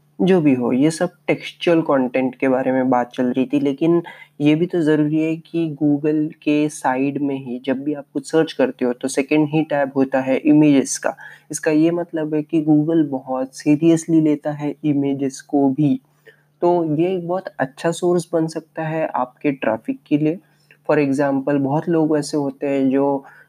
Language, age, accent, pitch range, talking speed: Hindi, 20-39, native, 135-155 Hz, 190 wpm